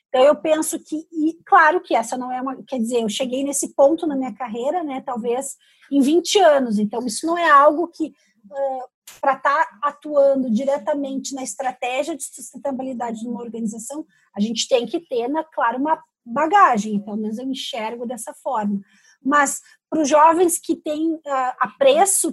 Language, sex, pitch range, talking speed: Portuguese, female, 235-290 Hz, 175 wpm